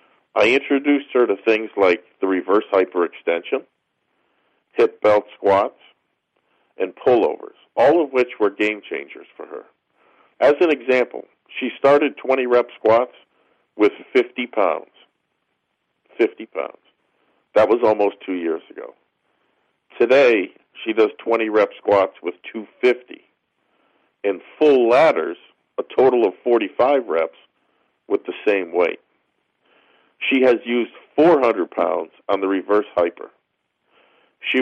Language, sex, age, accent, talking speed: English, male, 50-69, American, 125 wpm